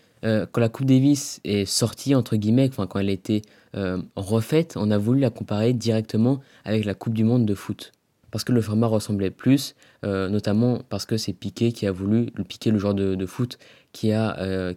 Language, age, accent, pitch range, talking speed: French, 20-39, French, 105-125 Hz, 210 wpm